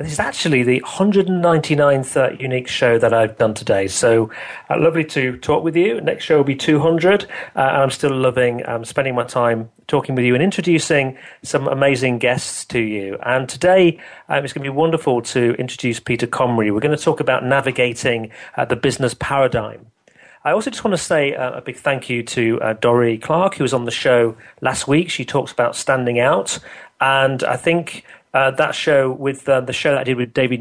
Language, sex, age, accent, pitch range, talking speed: English, male, 40-59, British, 120-155 Hz, 210 wpm